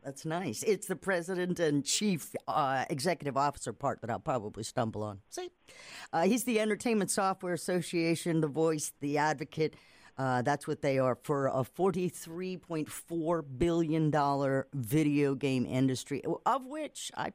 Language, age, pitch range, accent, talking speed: English, 50-69, 140-195 Hz, American, 145 wpm